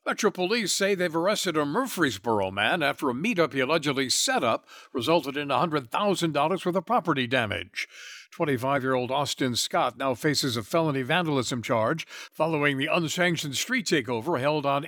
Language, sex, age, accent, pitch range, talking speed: English, male, 60-79, American, 120-165 Hz, 155 wpm